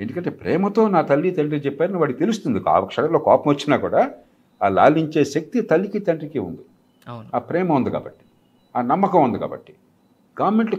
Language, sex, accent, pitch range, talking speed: Telugu, male, native, 125-175 Hz, 155 wpm